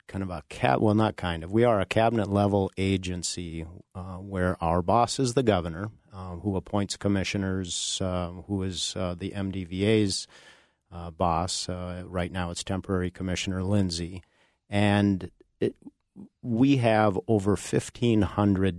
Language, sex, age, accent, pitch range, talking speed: English, male, 40-59, American, 90-105 Hz, 145 wpm